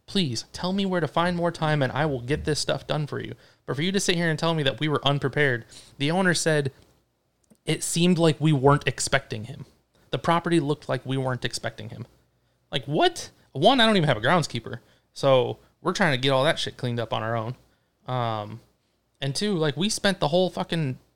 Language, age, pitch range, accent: English, 20-39, 115-150 Hz, American